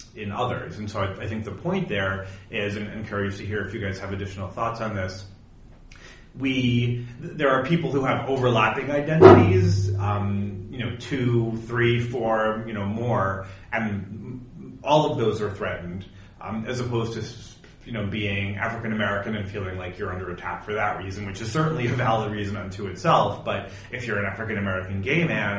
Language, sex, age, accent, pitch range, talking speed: English, male, 30-49, American, 100-120 Hz, 185 wpm